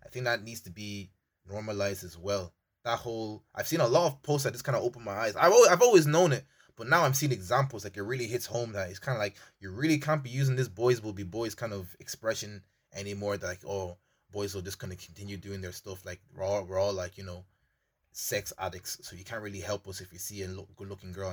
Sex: male